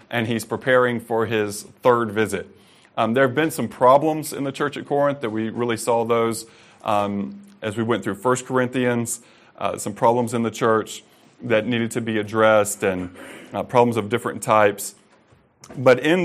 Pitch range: 100-120 Hz